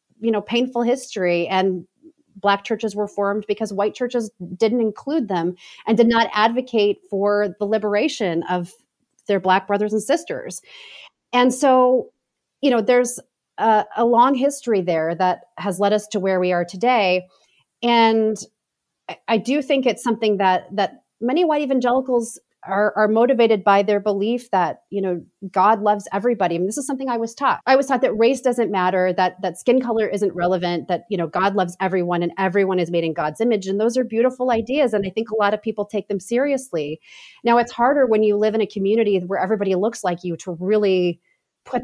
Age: 30-49